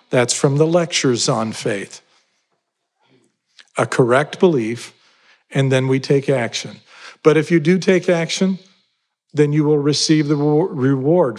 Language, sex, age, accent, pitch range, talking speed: English, male, 50-69, American, 130-165 Hz, 135 wpm